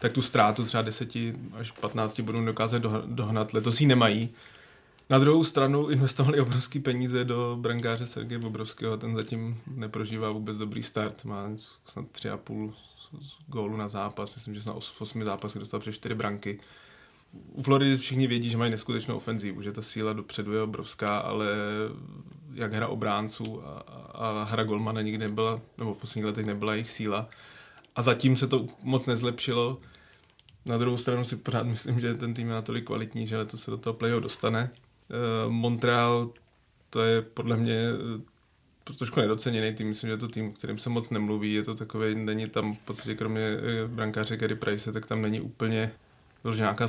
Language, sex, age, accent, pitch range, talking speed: Czech, male, 20-39, native, 110-120 Hz, 175 wpm